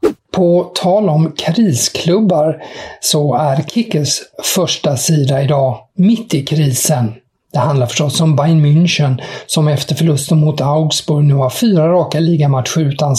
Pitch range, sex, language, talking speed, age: 135-160 Hz, male, English, 135 wpm, 50-69